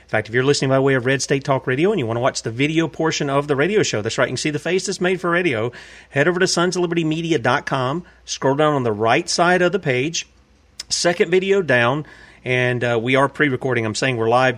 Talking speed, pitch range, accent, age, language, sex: 245 wpm, 125-150 Hz, American, 40-59, English, male